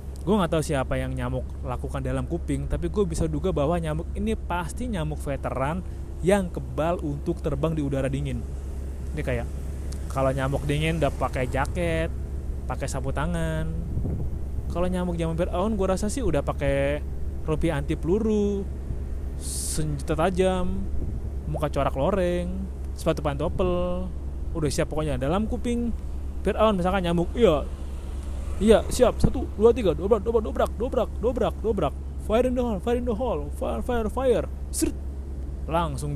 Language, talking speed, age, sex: Indonesian, 145 wpm, 20-39, male